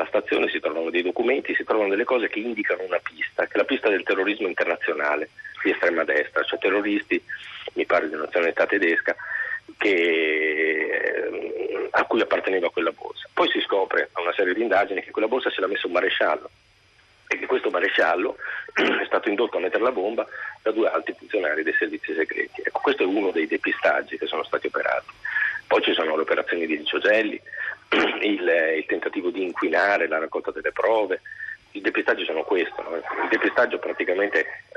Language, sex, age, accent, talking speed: Italian, male, 40-59, native, 180 wpm